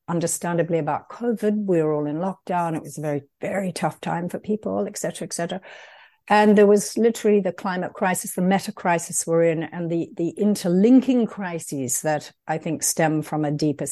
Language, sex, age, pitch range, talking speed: English, female, 60-79, 160-190 Hz, 195 wpm